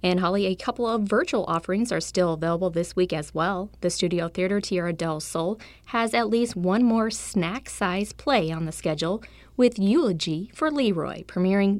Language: English